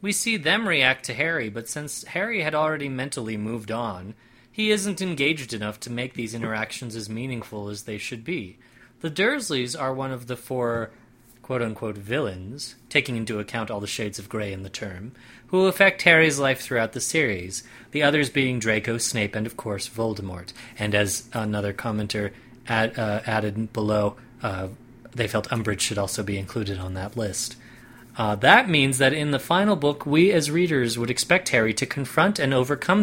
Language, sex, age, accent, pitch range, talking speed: English, male, 30-49, American, 110-150 Hz, 180 wpm